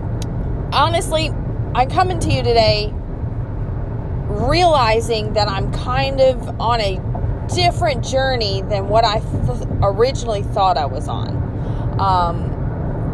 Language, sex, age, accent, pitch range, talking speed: English, female, 20-39, American, 110-130 Hz, 115 wpm